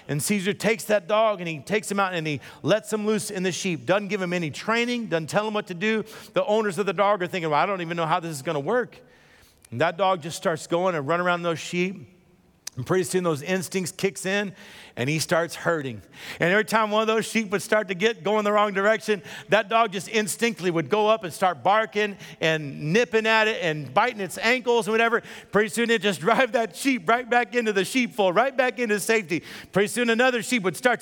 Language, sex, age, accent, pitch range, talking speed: English, male, 50-69, American, 180-235 Hz, 245 wpm